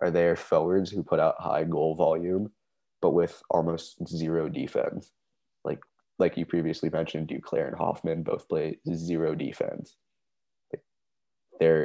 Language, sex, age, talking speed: English, male, 20-39, 135 wpm